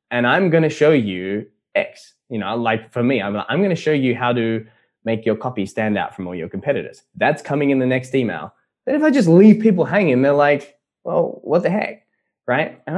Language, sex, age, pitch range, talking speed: English, male, 10-29, 105-150 Hz, 235 wpm